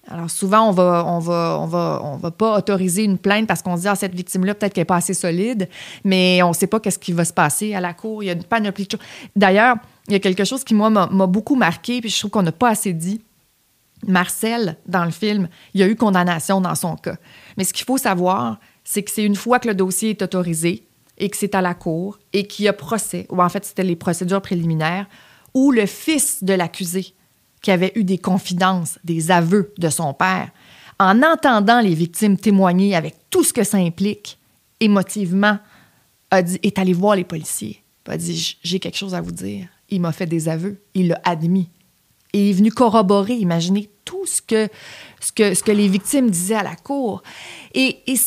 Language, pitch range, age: French, 175-205 Hz, 30-49